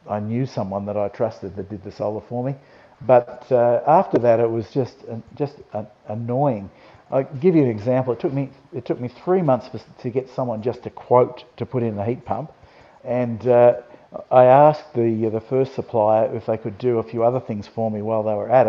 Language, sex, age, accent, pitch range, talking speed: English, male, 50-69, Australian, 110-130 Hz, 230 wpm